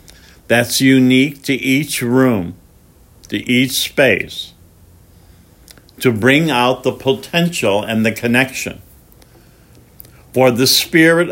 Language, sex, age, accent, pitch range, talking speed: English, male, 50-69, American, 95-135 Hz, 100 wpm